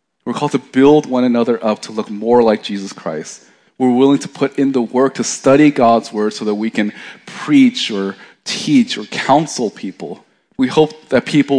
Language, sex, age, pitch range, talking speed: English, male, 30-49, 100-135 Hz, 195 wpm